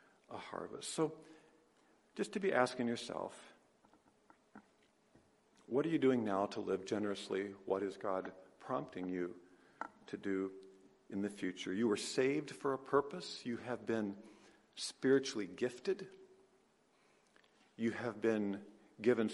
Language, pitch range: English, 110-165 Hz